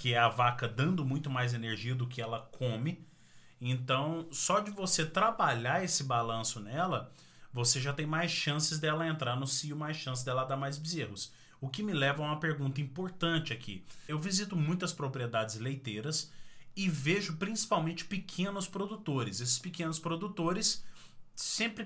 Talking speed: 160 wpm